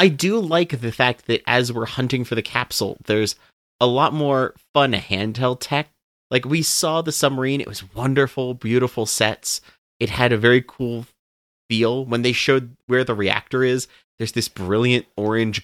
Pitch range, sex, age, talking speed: 100-125 Hz, male, 30-49, 175 wpm